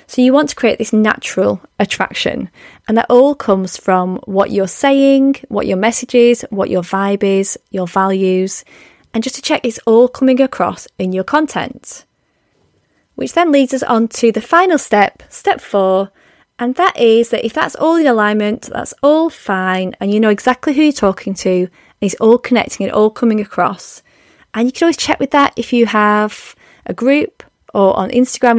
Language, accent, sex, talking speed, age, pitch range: English, British, female, 190 wpm, 20-39, 195-260 Hz